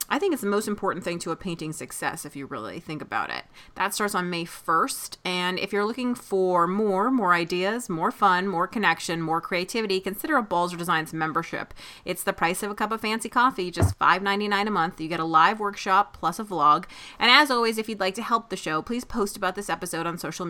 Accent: American